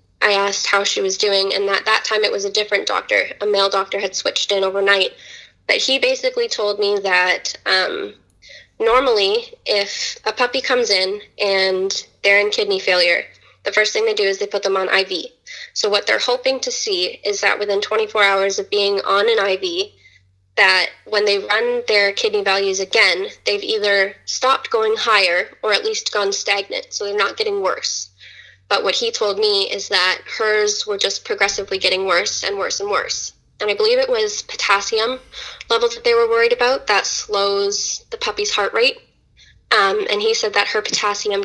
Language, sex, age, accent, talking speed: English, female, 10-29, American, 190 wpm